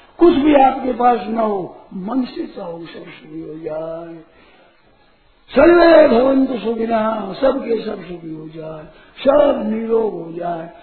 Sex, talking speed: male, 140 wpm